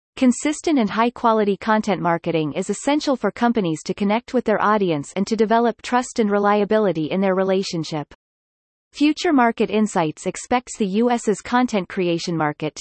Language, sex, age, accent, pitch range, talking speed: English, female, 30-49, American, 180-245 Hz, 150 wpm